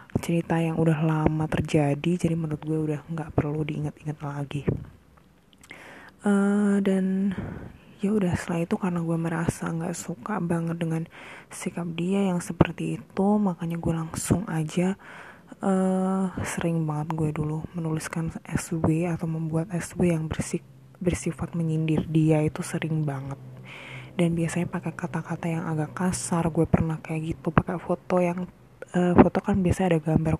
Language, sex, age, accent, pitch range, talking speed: Indonesian, female, 20-39, native, 155-175 Hz, 145 wpm